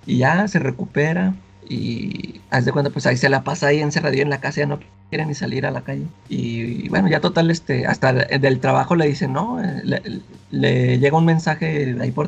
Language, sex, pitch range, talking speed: Spanish, male, 135-165 Hz, 220 wpm